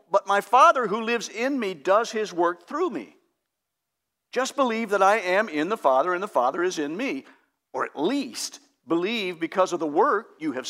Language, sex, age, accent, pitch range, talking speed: English, male, 60-79, American, 170-245 Hz, 200 wpm